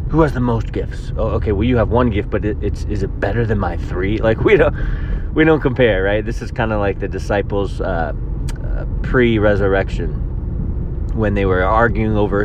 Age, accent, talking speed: 30-49, American, 195 wpm